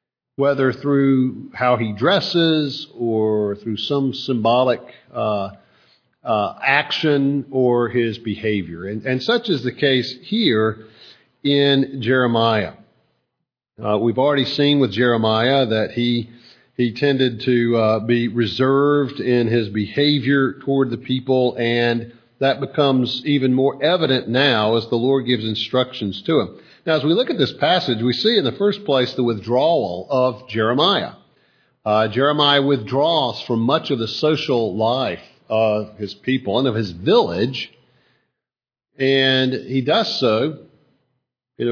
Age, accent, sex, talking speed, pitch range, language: 50-69, American, male, 140 wpm, 110-135 Hz, English